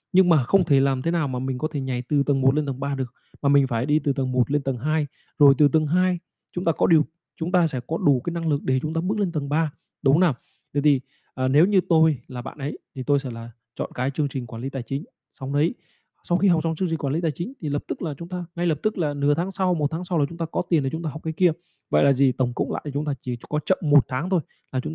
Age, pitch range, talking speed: 20-39, 135-160 Hz, 315 wpm